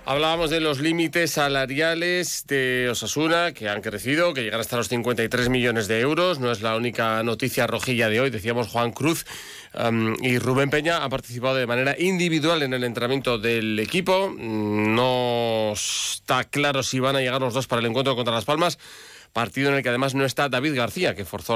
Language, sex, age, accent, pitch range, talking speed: Spanish, male, 40-59, Spanish, 115-145 Hz, 190 wpm